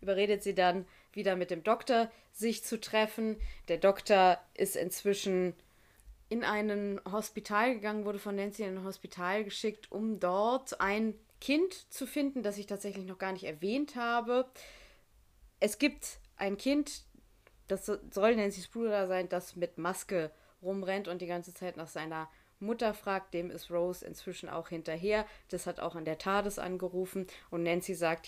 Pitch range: 180-215 Hz